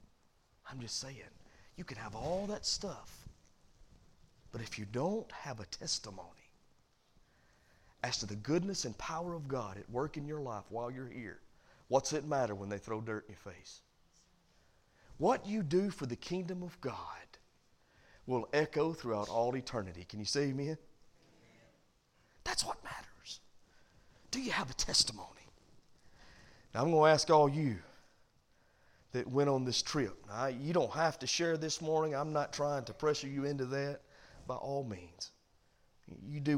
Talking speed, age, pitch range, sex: 165 wpm, 40-59, 110-160 Hz, male